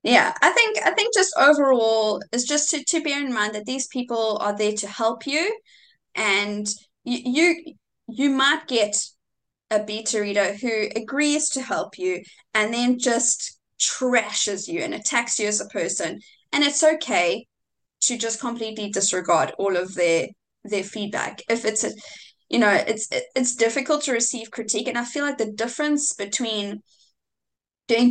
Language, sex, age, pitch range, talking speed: English, female, 20-39, 205-255 Hz, 165 wpm